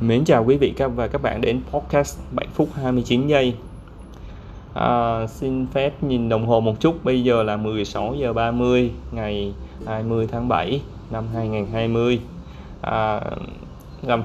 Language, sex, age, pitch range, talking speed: Vietnamese, male, 20-39, 100-125 Hz, 145 wpm